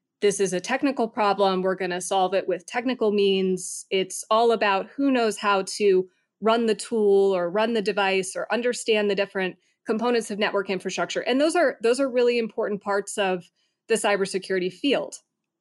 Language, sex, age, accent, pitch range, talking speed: English, female, 30-49, American, 190-225 Hz, 180 wpm